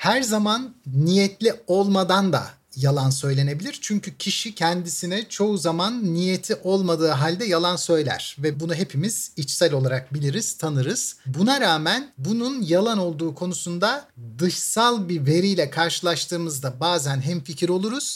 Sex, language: male, Turkish